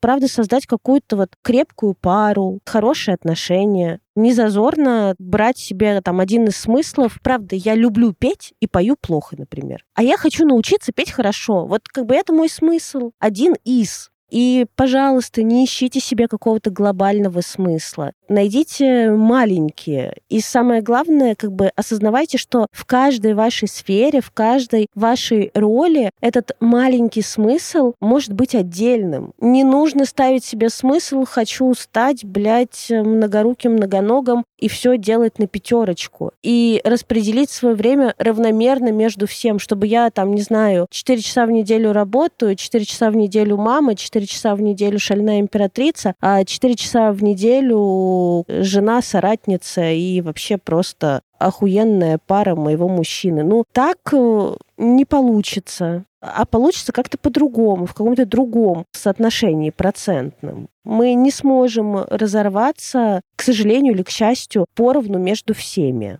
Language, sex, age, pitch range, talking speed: Russian, female, 20-39, 200-250 Hz, 135 wpm